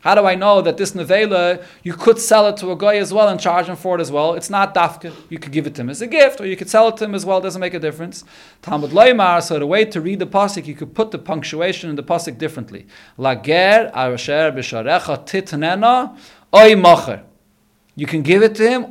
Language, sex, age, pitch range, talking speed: English, male, 40-59, 155-210 Hz, 245 wpm